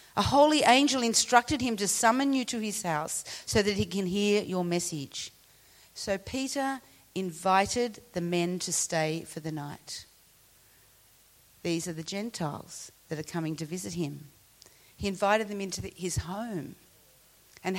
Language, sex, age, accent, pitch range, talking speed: English, female, 40-59, Australian, 170-225 Hz, 150 wpm